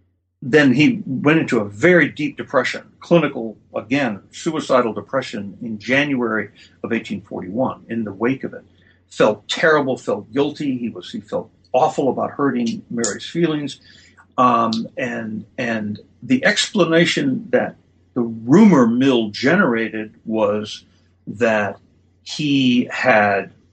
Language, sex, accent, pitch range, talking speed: English, male, American, 105-140 Hz, 120 wpm